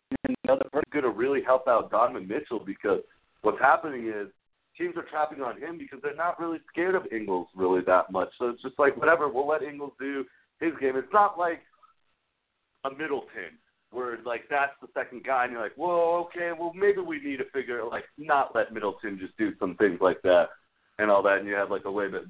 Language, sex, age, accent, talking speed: English, male, 50-69, American, 230 wpm